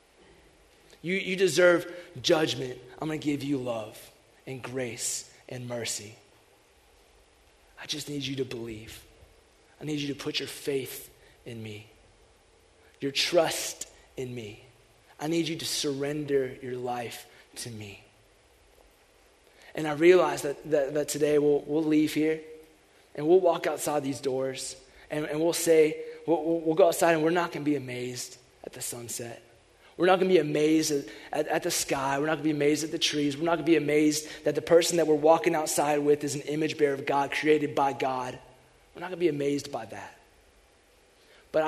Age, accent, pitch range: 20-39, American, 125-155 Hz